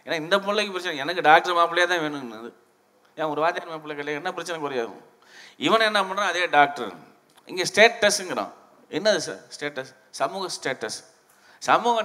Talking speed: 150 wpm